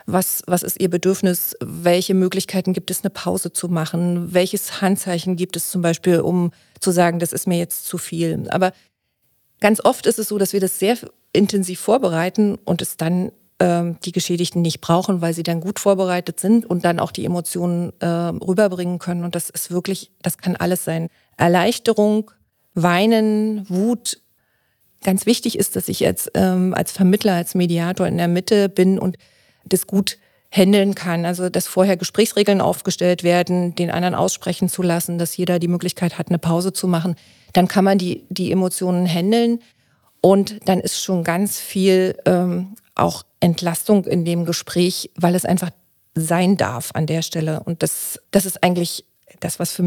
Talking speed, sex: 180 wpm, female